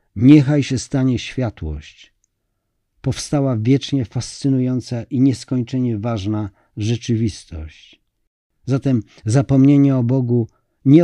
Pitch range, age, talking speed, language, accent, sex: 110-140 Hz, 50-69, 85 wpm, Polish, native, male